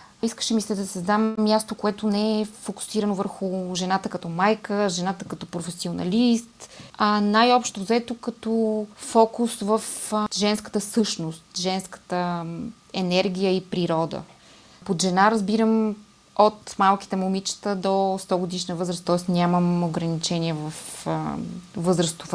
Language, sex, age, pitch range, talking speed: Bulgarian, female, 20-39, 180-210 Hz, 120 wpm